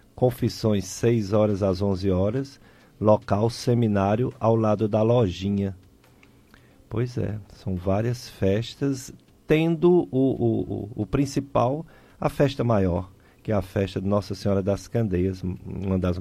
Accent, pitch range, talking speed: Brazilian, 95-135 Hz, 135 wpm